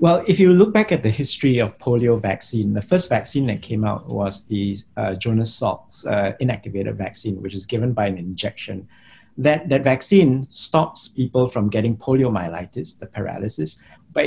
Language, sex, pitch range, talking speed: English, male, 100-130 Hz, 175 wpm